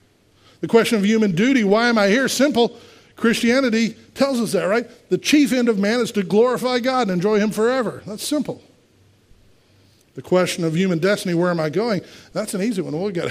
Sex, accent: male, American